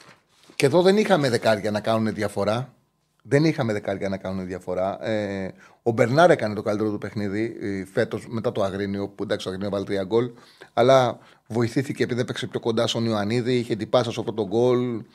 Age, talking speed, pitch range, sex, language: 30-49, 180 wpm, 110-150 Hz, male, Greek